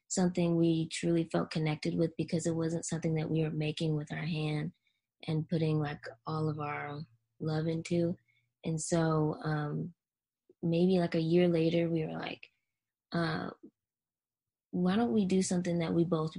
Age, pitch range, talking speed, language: 20-39, 150-170 Hz, 165 wpm, English